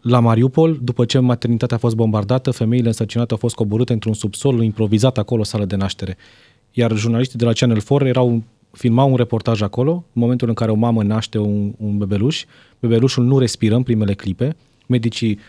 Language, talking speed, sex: Romanian, 190 wpm, male